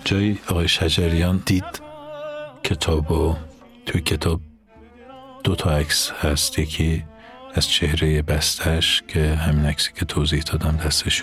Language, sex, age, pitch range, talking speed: Persian, male, 50-69, 75-85 Hz, 120 wpm